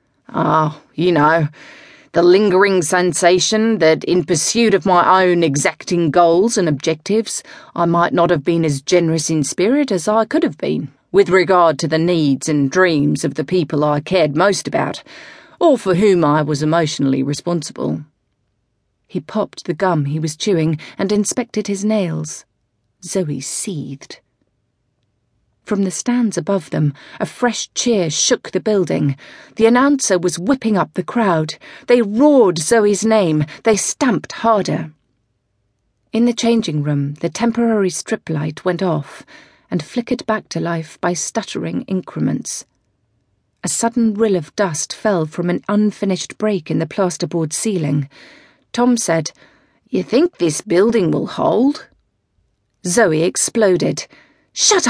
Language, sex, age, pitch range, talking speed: English, female, 40-59, 150-210 Hz, 145 wpm